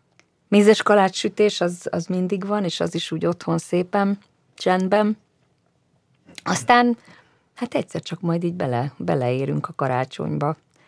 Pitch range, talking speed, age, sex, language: 140-175 Hz, 125 wpm, 30-49, female, Hungarian